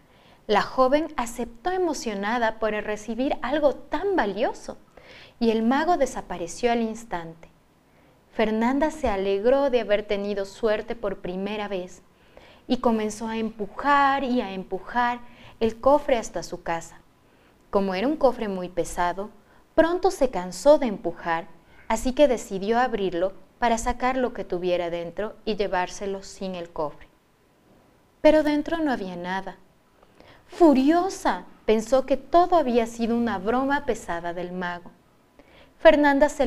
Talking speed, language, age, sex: 135 wpm, Spanish, 30-49, female